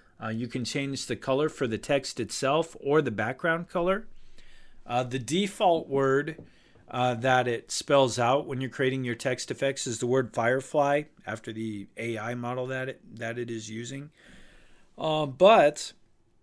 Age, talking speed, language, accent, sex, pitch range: 40-59, 165 wpm, English, American, male, 115-135 Hz